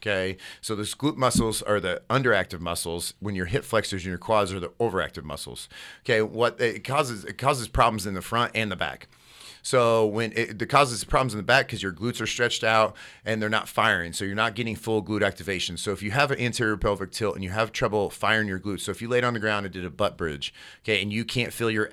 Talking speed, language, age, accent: 250 wpm, English, 40-59, American